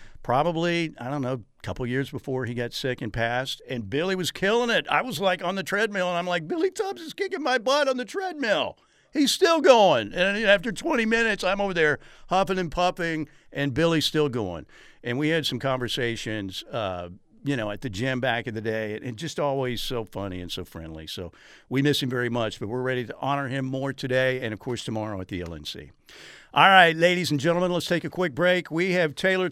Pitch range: 125-175 Hz